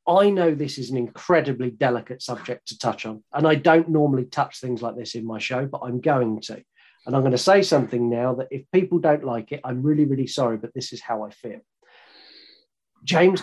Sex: male